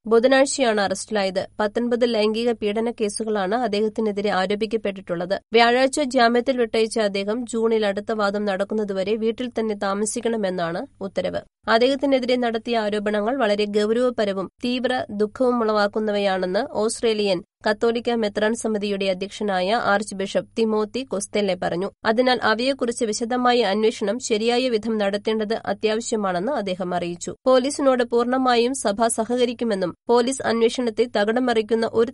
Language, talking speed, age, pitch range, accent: Malayalam, 100 wpm, 20-39, 200-235 Hz, native